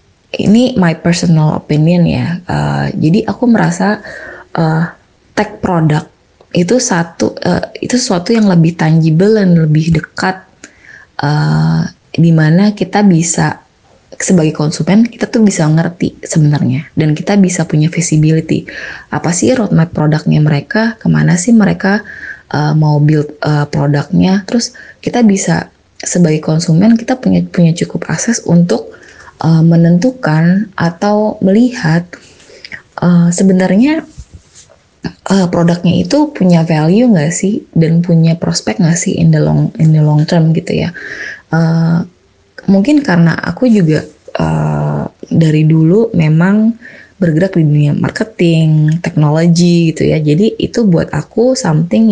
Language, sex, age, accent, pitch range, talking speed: Indonesian, female, 20-39, native, 155-200 Hz, 130 wpm